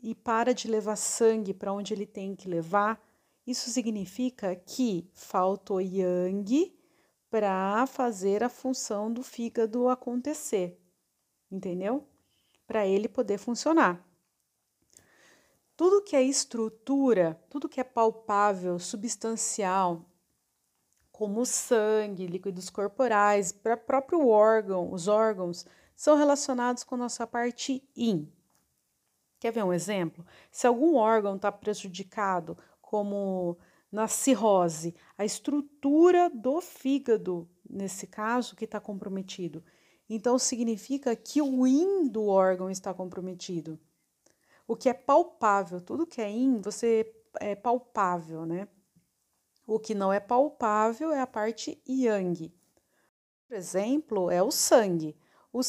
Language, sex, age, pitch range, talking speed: Portuguese, female, 40-59, 190-250 Hz, 115 wpm